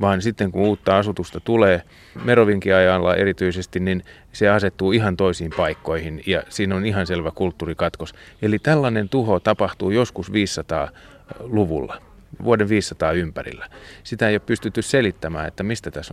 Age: 30-49